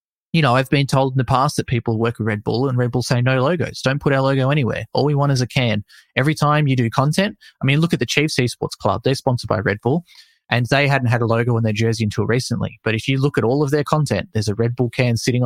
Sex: male